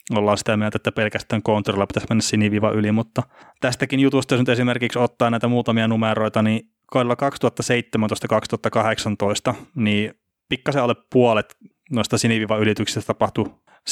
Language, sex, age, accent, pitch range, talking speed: Finnish, male, 20-39, native, 105-120 Hz, 130 wpm